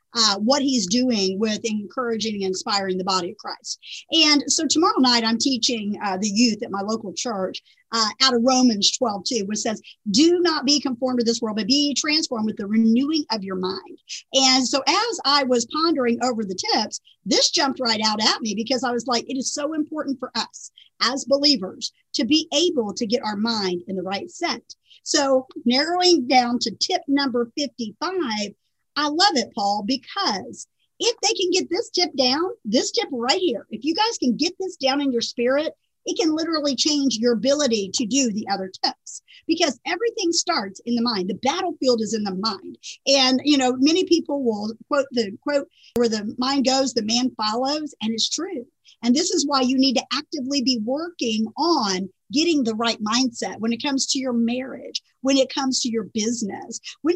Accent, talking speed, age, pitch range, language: American, 200 wpm, 50-69, 225-300 Hz, English